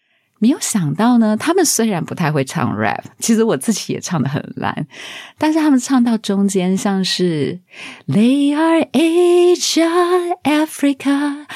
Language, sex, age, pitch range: English, female, 30-49, 190-295 Hz